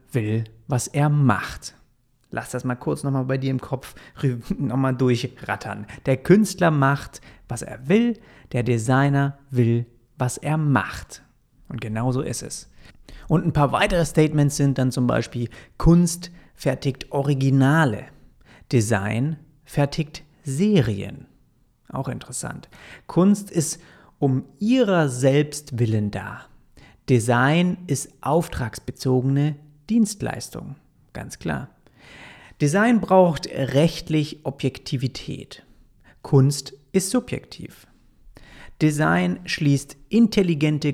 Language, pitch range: German, 125-155 Hz